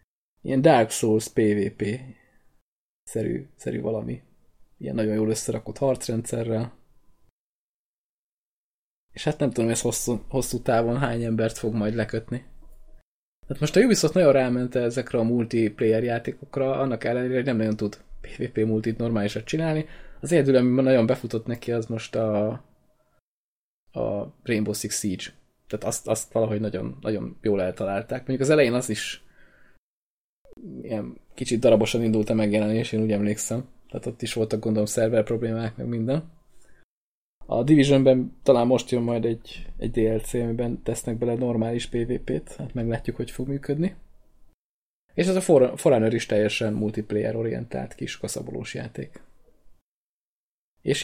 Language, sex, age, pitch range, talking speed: Hungarian, male, 20-39, 110-125 Hz, 135 wpm